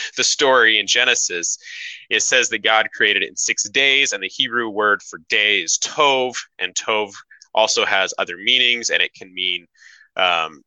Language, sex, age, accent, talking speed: English, male, 20-39, American, 180 wpm